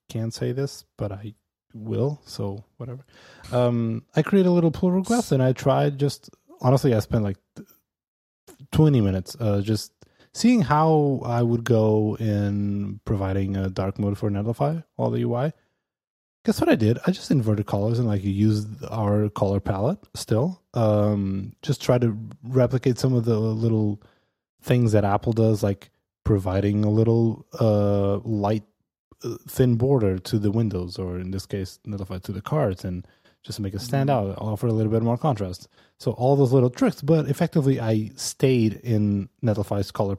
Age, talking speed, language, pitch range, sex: 20-39, 170 wpm, English, 100-130 Hz, male